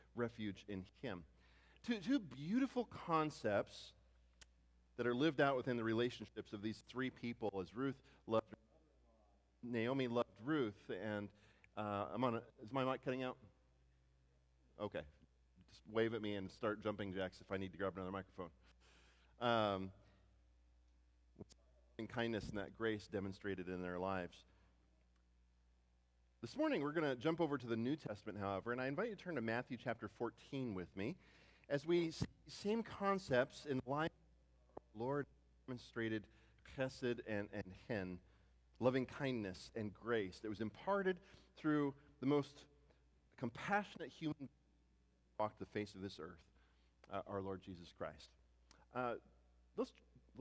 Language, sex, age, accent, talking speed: English, male, 40-59, American, 150 wpm